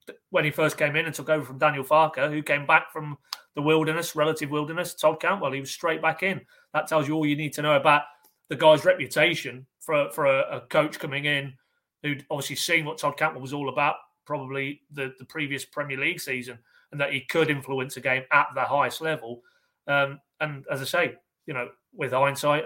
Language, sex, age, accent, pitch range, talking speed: English, male, 30-49, British, 135-155 Hz, 215 wpm